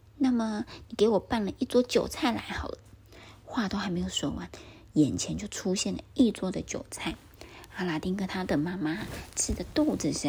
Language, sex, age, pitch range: Chinese, female, 20-39, 165-235 Hz